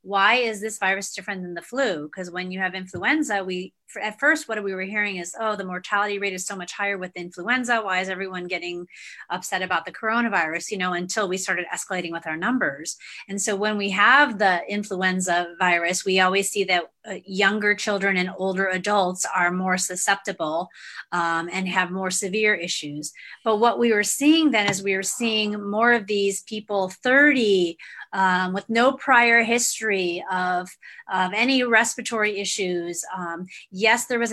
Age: 30-49